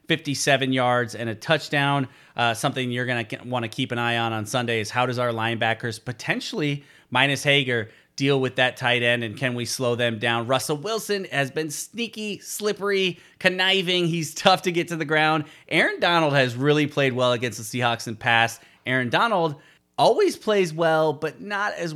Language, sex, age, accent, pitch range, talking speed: English, male, 30-49, American, 125-155 Hz, 190 wpm